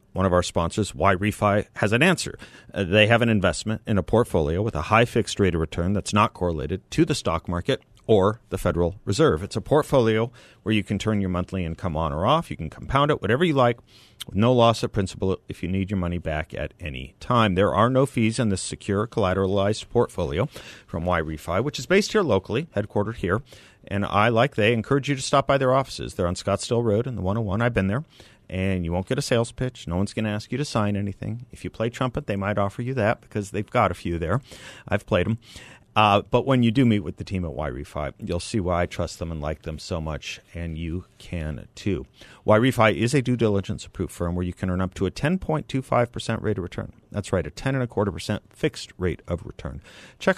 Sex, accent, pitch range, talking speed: male, American, 90-120 Hz, 235 wpm